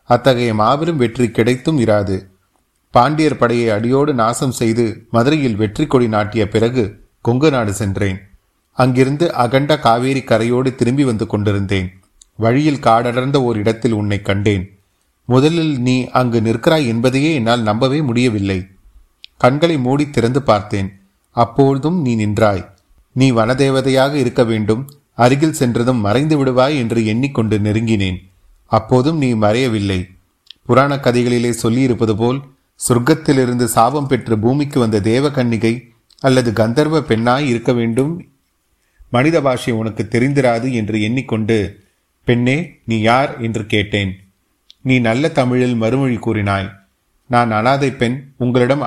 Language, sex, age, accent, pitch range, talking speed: Tamil, male, 30-49, native, 105-130 Hz, 115 wpm